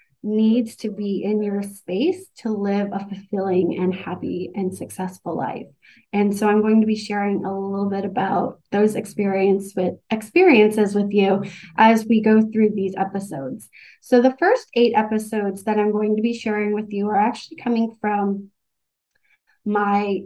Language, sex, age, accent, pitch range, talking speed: English, female, 30-49, American, 195-235 Hz, 165 wpm